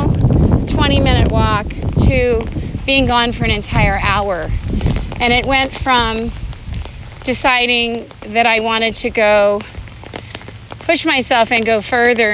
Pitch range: 170-235 Hz